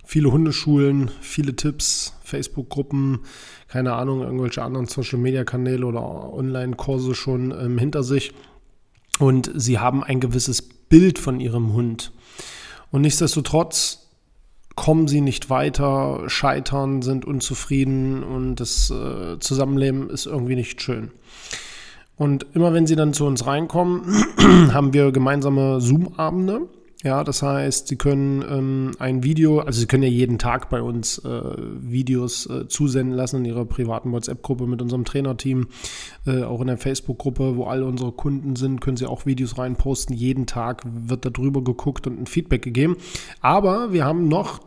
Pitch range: 125-150 Hz